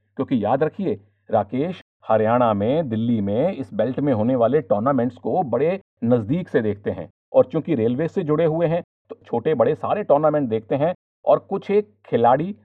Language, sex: Hindi, male